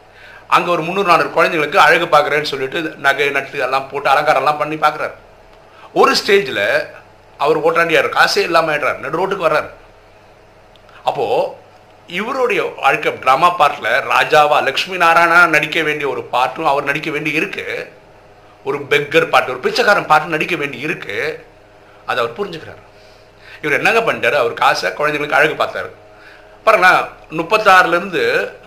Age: 50-69